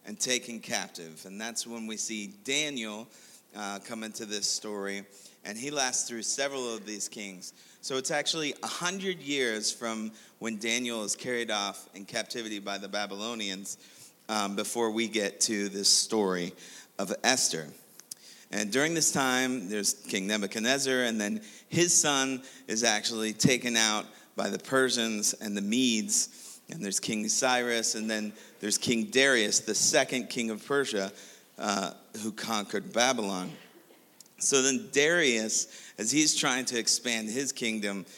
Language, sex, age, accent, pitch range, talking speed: English, male, 30-49, American, 105-125 Hz, 150 wpm